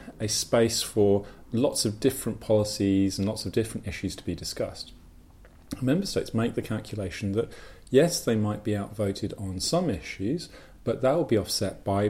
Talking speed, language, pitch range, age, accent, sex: 175 wpm, English, 90-105 Hz, 40-59, British, male